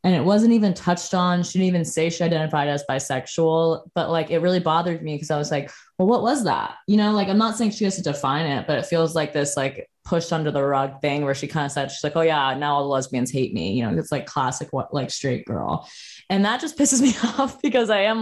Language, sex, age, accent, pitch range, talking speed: English, female, 20-39, American, 140-180 Hz, 270 wpm